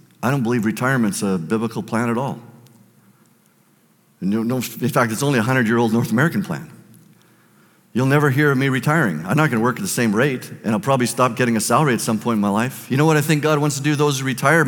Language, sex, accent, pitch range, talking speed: English, male, American, 185-245 Hz, 240 wpm